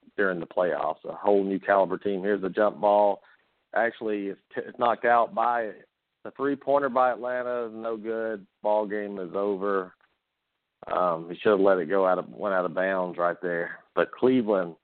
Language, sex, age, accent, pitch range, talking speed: English, male, 50-69, American, 90-105 Hz, 180 wpm